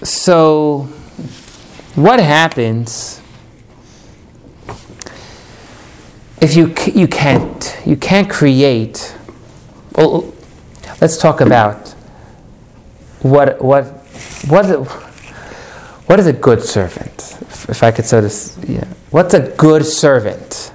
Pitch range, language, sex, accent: 115-160 Hz, English, male, American